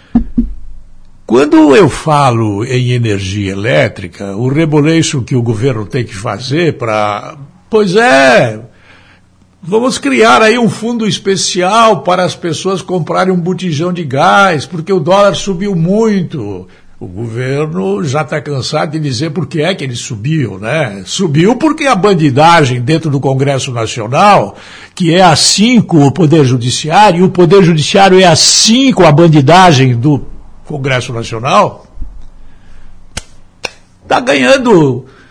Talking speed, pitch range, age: 135 wpm, 120-195 Hz, 60-79